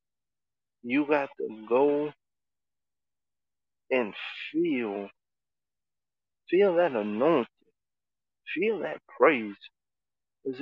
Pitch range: 100-135 Hz